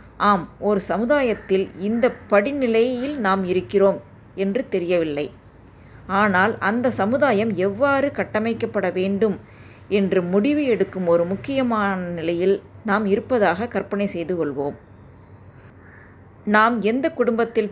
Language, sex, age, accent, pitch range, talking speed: Tamil, female, 20-39, native, 180-230 Hz, 100 wpm